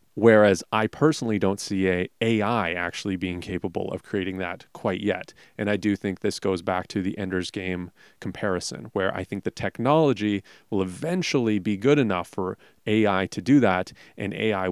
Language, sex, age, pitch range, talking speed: English, male, 30-49, 95-115 Hz, 180 wpm